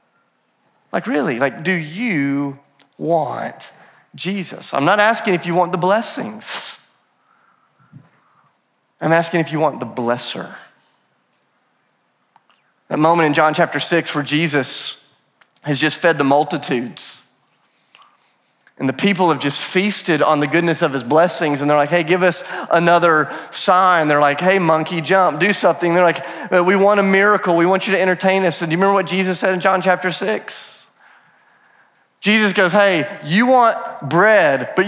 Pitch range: 155-205 Hz